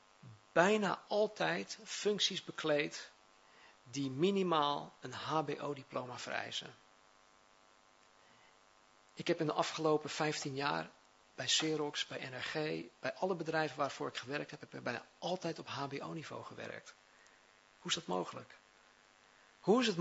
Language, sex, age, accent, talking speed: Dutch, male, 40-59, Dutch, 120 wpm